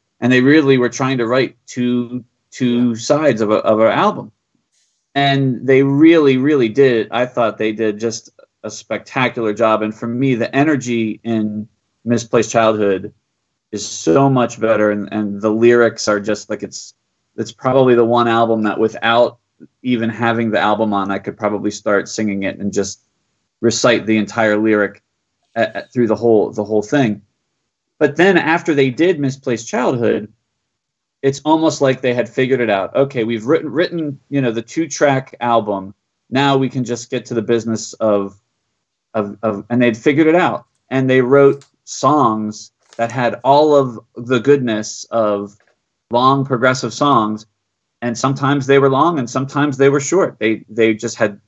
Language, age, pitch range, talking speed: English, 30-49, 110-135 Hz, 175 wpm